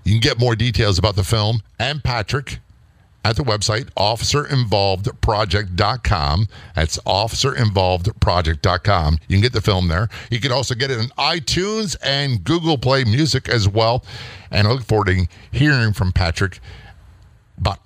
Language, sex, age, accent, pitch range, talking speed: English, male, 50-69, American, 90-120 Hz, 150 wpm